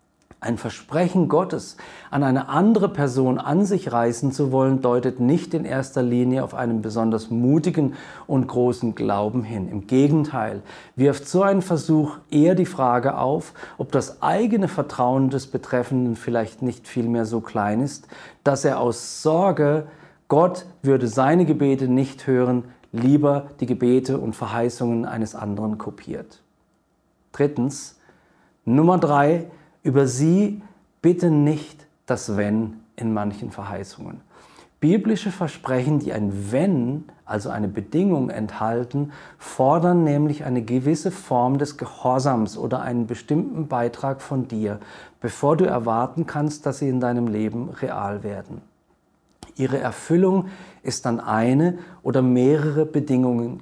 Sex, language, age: male, German, 40-59